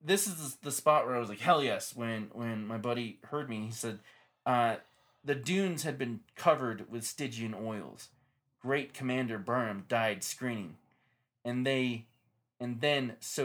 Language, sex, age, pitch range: English, male, 20-39, 115-175 Hz